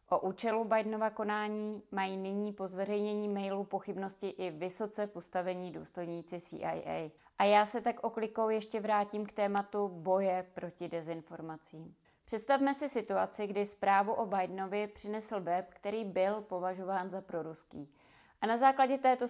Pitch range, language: 180-210 Hz, Czech